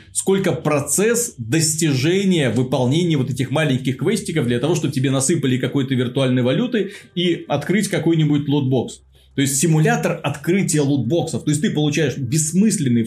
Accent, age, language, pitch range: native, 20-39, Russian, 125-170 Hz